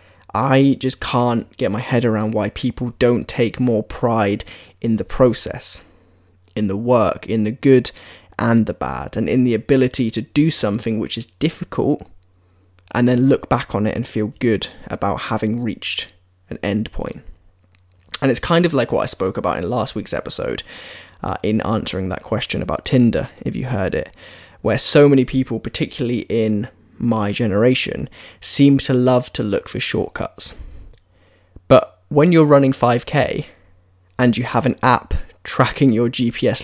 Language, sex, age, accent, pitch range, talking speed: English, male, 10-29, British, 95-130 Hz, 165 wpm